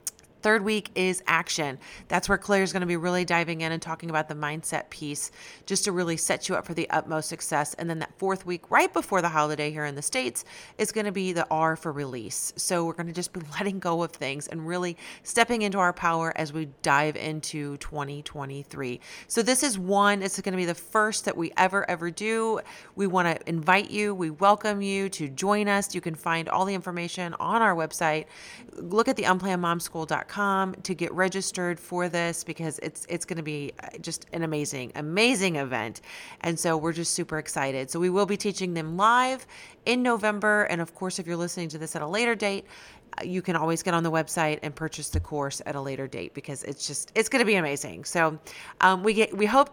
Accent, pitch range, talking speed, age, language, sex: American, 160-195 Hz, 220 wpm, 30-49, English, female